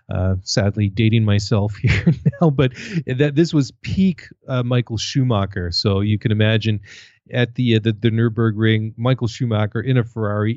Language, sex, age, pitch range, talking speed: English, male, 30-49, 105-125 Hz, 170 wpm